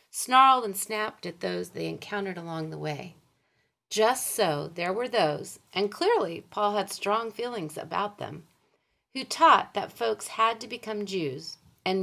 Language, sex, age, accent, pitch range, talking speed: English, female, 40-59, American, 175-245 Hz, 160 wpm